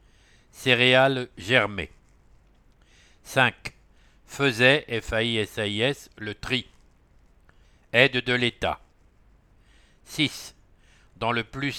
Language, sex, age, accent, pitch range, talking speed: English, male, 60-79, French, 105-135 Hz, 70 wpm